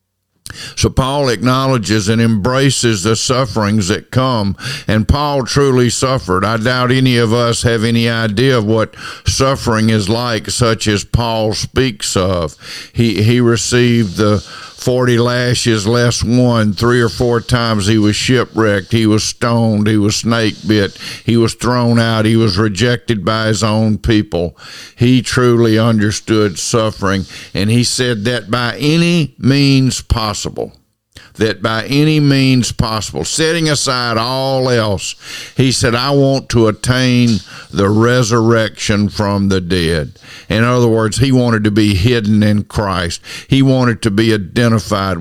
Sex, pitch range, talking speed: male, 105-125 Hz, 145 wpm